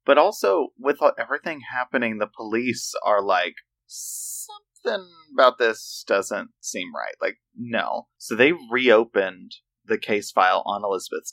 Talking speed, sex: 130 wpm, male